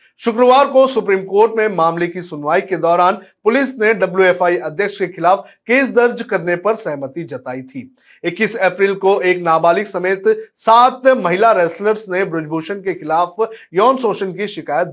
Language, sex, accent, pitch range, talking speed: Hindi, male, native, 170-220 Hz, 155 wpm